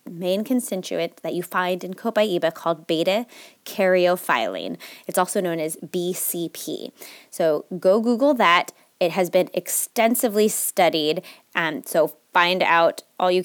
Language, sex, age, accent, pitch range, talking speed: English, female, 20-39, American, 170-220 Hz, 135 wpm